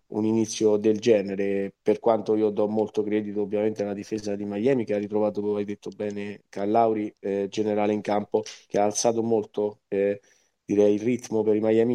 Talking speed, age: 190 wpm, 20-39